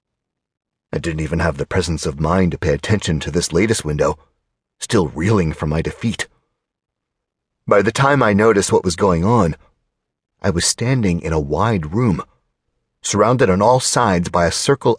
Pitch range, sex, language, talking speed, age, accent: 80-115 Hz, male, English, 170 wpm, 40-59, American